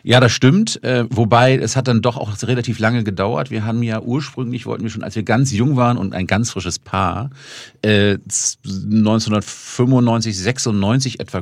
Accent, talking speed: German, 180 wpm